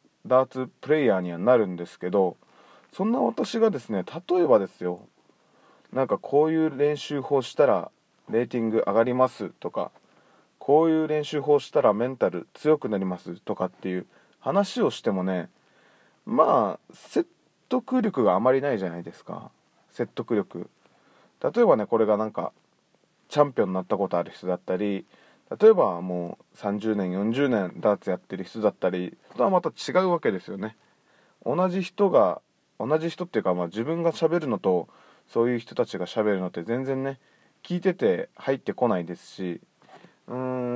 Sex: male